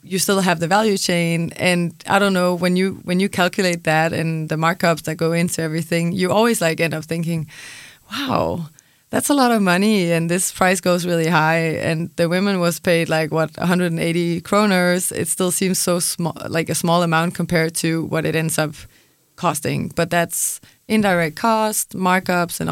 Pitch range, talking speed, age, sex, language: 165-185 Hz, 190 wpm, 20-39, female, Danish